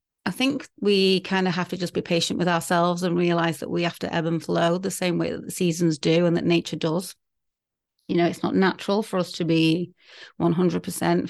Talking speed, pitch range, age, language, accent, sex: 225 wpm, 165-185 Hz, 30-49, English, British, female